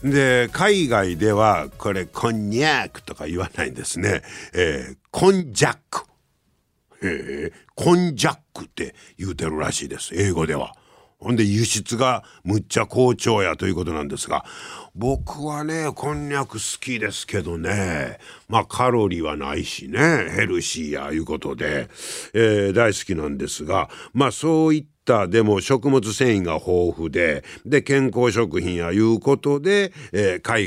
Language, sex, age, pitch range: Japanese, male, 60-79, 90-130 Hz